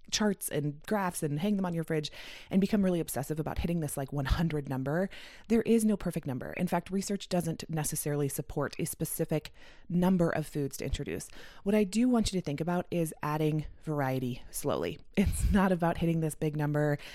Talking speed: 195 wpm